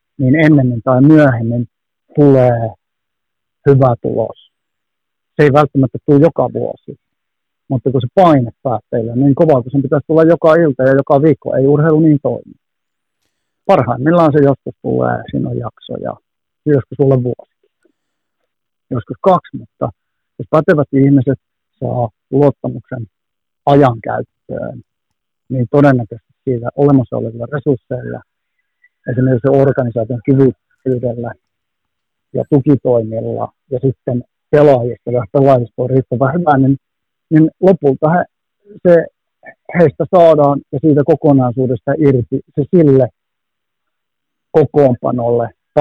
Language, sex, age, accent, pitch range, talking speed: Finnish, male, 50-69, native, 125-150 Hz, 110 wpm